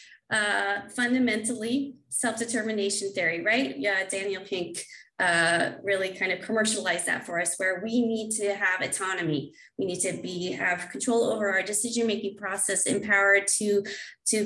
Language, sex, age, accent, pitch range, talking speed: English, female, 20-39, American, 190-230 Hz, 155 wpm